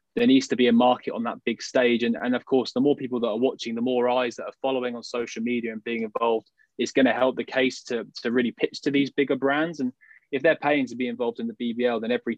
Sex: male